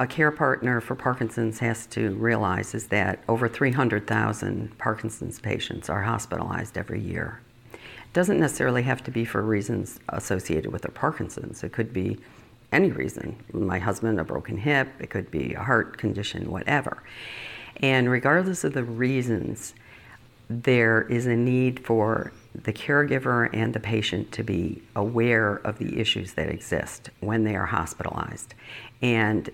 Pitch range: 105-125 Hz